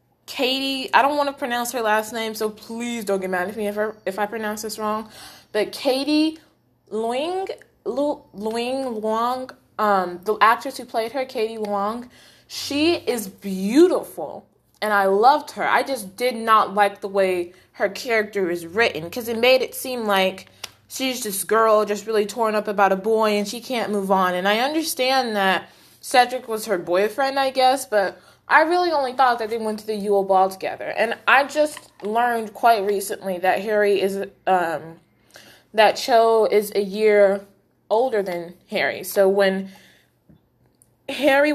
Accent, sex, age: American, female, 20-39